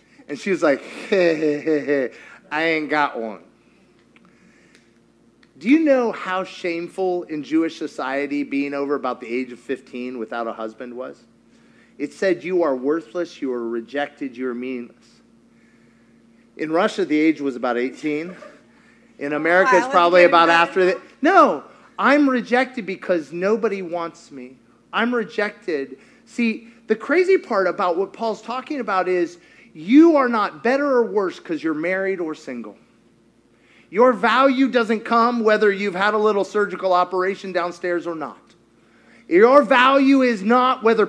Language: English